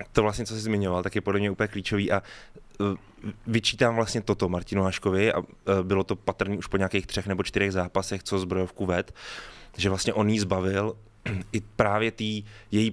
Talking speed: 185 wpm